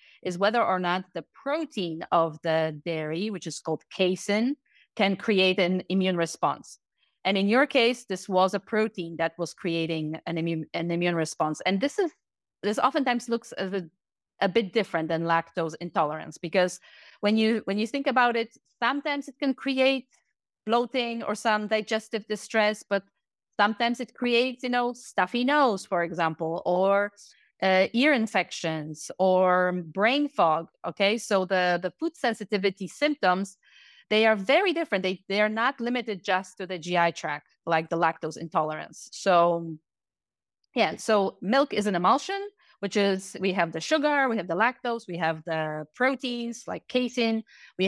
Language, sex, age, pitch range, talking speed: English, female, 30-49, 175-235 Hz, 160 wpm